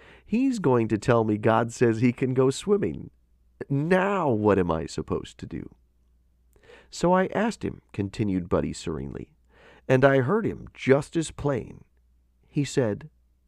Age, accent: 40-59, American